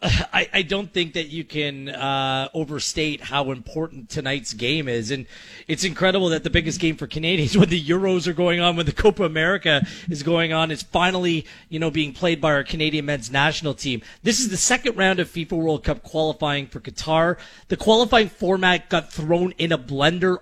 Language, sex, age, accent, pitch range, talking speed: English, male, 30-49, American, 155-190 Hz, 200 wpm